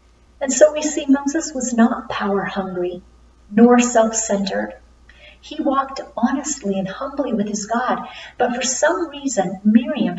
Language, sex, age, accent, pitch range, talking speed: English, female, 50-69, American, 200-245 Hz, 140 wpm